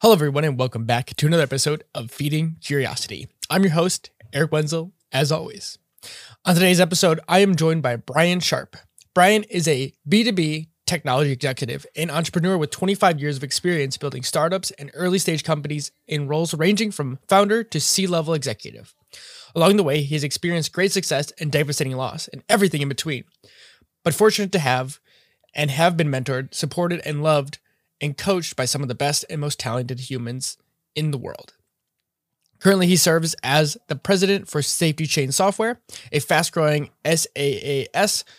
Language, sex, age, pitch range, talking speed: English, male, 20-39, 140-175 Hz, 165 wpm